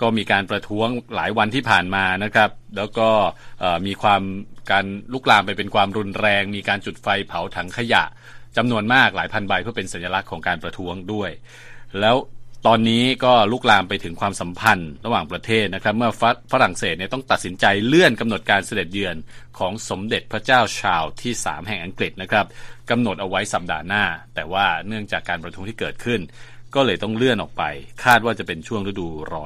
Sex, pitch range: male, 95-120 Hz